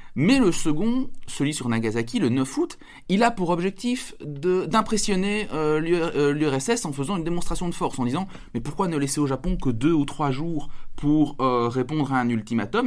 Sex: male